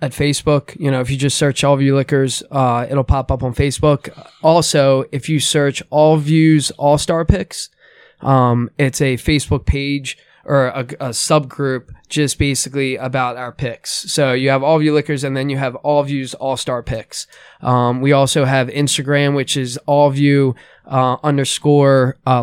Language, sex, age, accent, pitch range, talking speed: English, male, 20-39, American, 125-145 Hz, 175 wpm